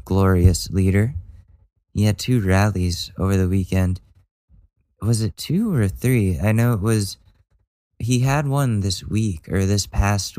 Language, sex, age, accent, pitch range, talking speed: English, male, 20-39, American, 90-105 Hz, 150 wpm